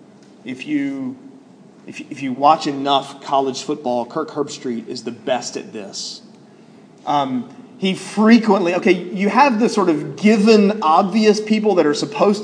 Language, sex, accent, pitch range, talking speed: English, male, American, 155-220 Hz, 150 wpm